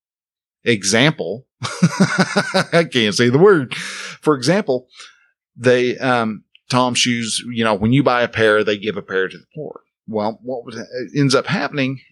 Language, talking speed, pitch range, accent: English, 155 wpm, 105-150 Hz, American